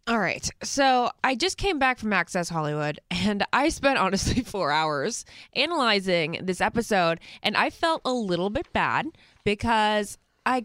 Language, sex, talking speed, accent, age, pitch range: English, female, 160 wpm, American, 20-39, 190-260 Hz